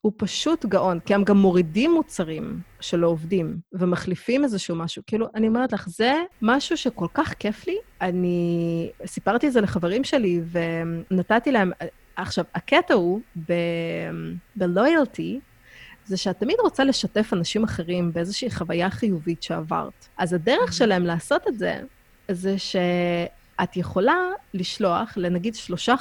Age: 30-49